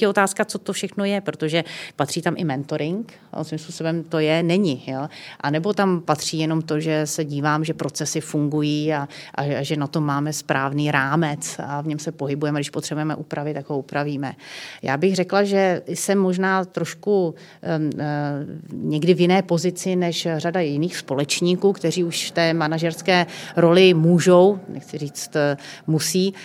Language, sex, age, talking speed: Czech, female, 30-49, 170 wpm